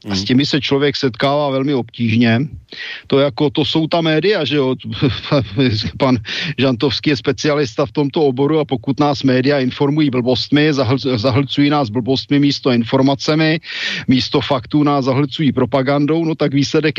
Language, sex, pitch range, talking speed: Slovak, male, 130-155 Hz, 150 wpm